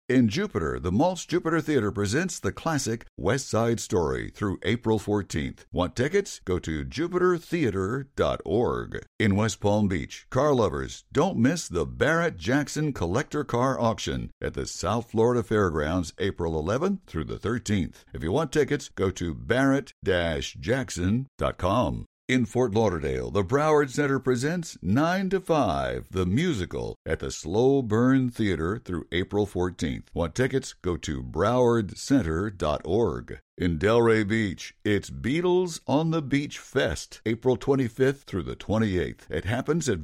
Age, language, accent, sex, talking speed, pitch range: 60-79, English, American, male, 140 wpm, 95-135 Hz